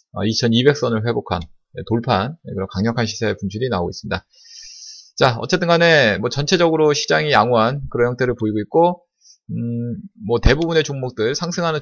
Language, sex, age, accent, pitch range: Korean, male, 20-39, native, 115-170 Hz